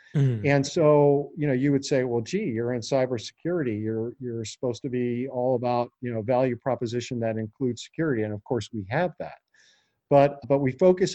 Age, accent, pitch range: 50-69, American, 120-145 Hz